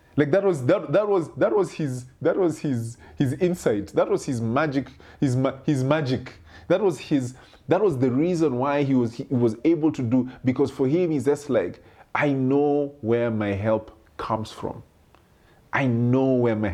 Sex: male